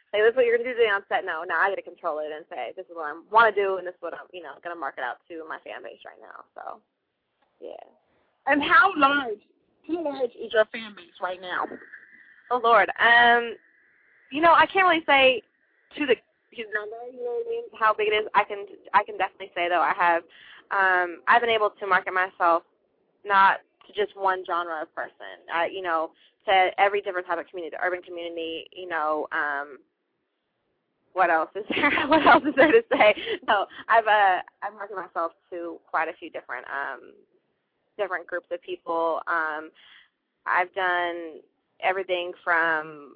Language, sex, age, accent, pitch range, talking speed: English, female, 20-39, American, 170-235 Hz, 205 wpm